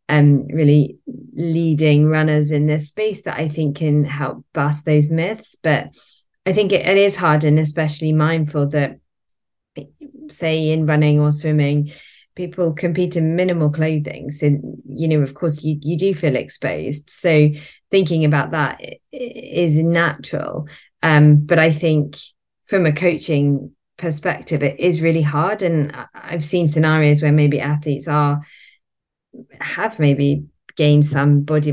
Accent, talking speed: British, 150 wpm